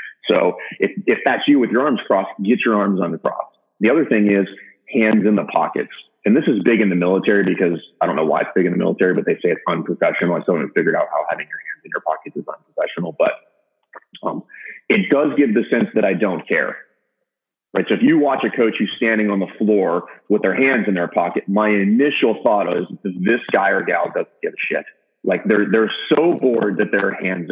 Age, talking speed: 30-49, 235 wpm